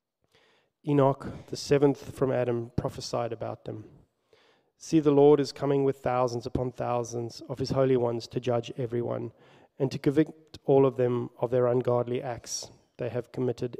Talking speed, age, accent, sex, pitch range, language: 160 wpm, 30-49, Australian, male, 120-140 Hz, English